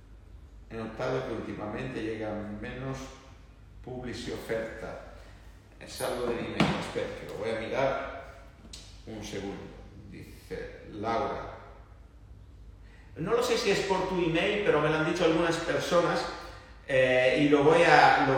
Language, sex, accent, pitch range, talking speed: Spanish, male, Spanish, 120-155 Hz, 140 wpm